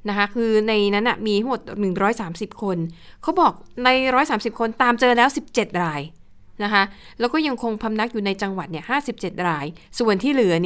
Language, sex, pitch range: Thai, female, 190-245 Hz